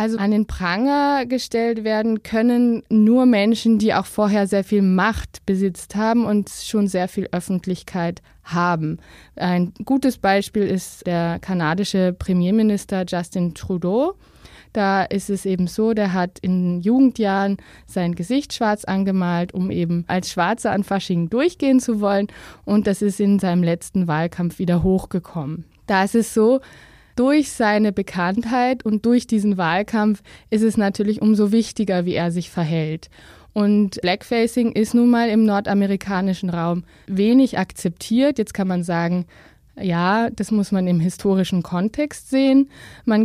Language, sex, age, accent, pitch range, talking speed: German, female, 20-39, German, 180-220 Hz, 145 wpm